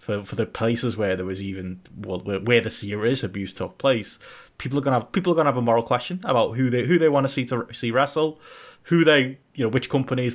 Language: English